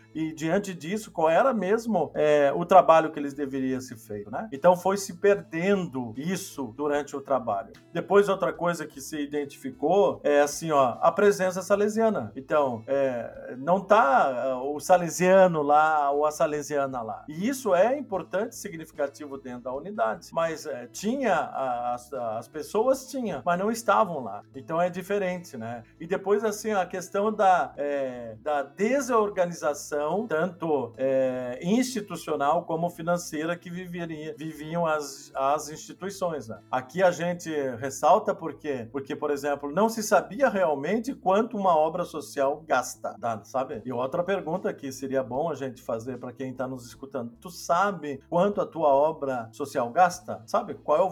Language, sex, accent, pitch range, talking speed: Portuguese, male, Brazilian, 140-190 Hz, 160 wpm